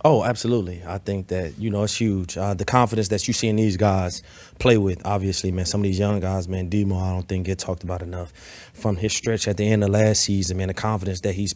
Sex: male